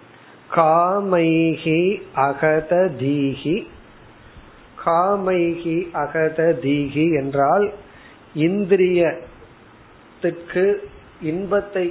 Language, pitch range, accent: Tamil, 145-180 Hz, native